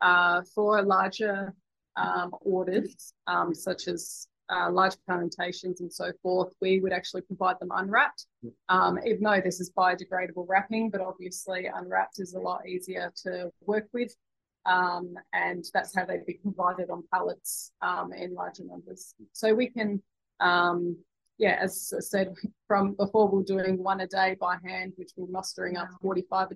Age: 20-39